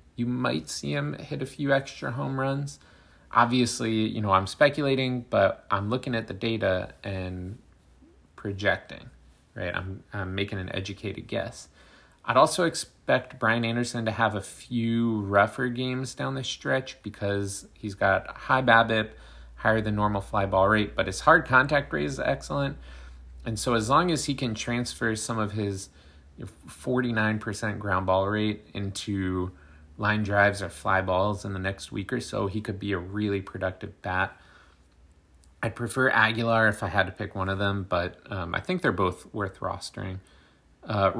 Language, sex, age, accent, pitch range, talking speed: English, male, 30-49, American, 95-115 Hz, 170 wpm